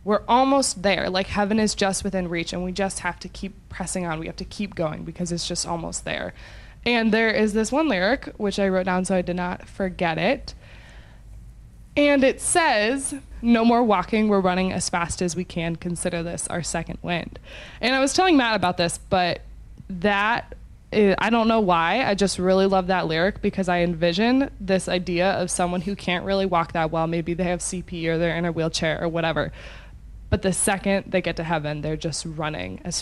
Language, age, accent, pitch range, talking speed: English, 20-39, American, 170-205 Hz, 210 wpm